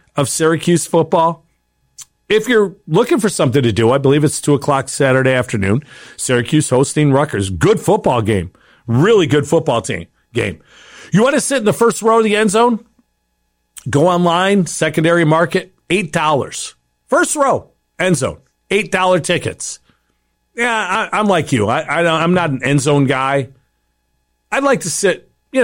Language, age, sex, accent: English, 40-59, male, American